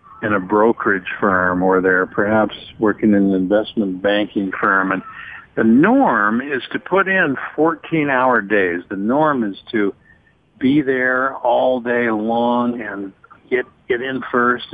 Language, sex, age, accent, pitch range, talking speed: English, male, 60-79, American, 100-120 Hz, 145 wpm